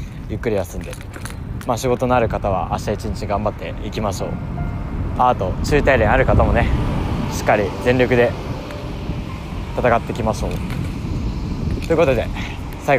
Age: 20-39